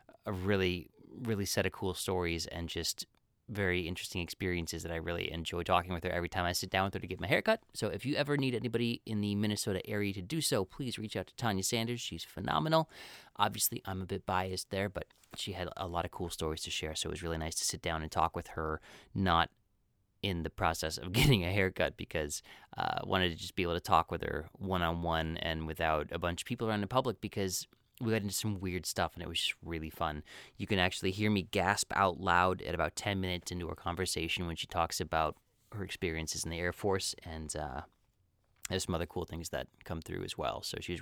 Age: 30-49